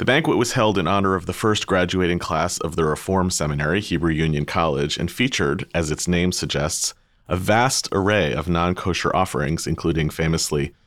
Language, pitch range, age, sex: English, 80-95 Hz, 30-49, male